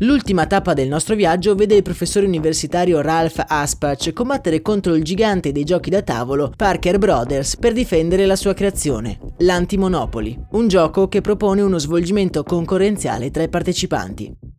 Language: Italian